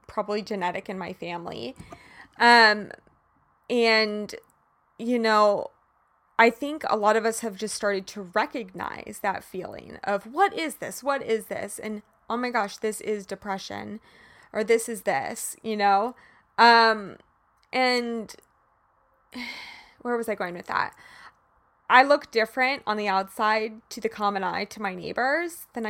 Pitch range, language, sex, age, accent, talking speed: 210-260 Hz, English, female, 20-39, American, 150 wpm